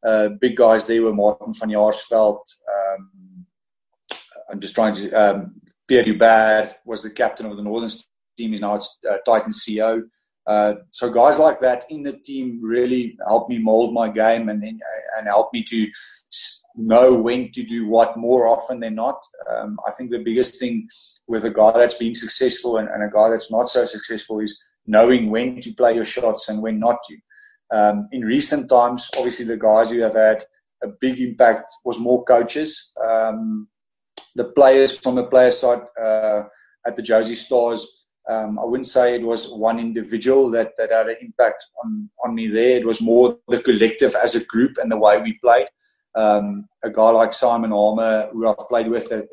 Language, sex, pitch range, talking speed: English, male, 110-125 Hz, 190 wpm